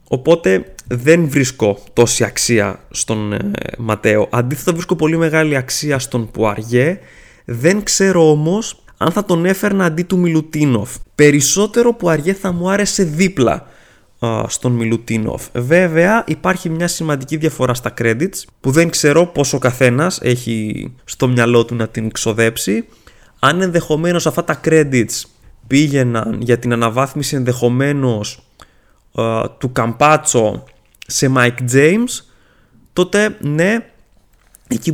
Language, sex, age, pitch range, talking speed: Greek, male, 20-39, 120-170 Hz, 120 wpm